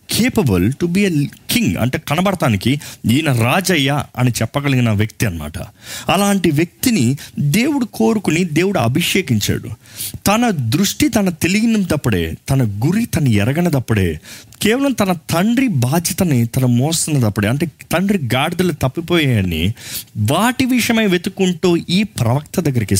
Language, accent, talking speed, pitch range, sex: Telugu, native, 110 wpm, 110-165 Hz, male